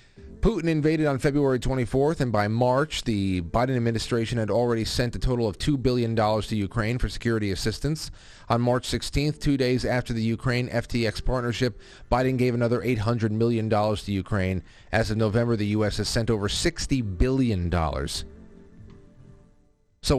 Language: English